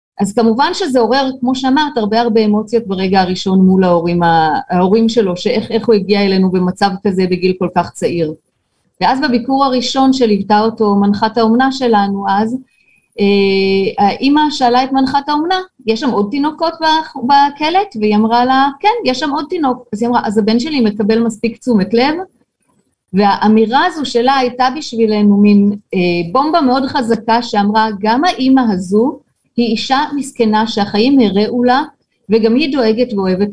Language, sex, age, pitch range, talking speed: Hebrew, female, 30-49, 205-260 Hz, 155 wpm